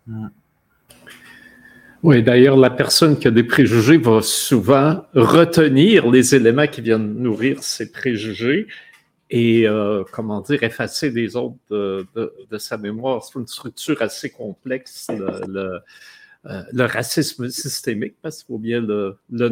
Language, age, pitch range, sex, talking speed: French, 50-69, 110-140 Hz, male, 150 wpm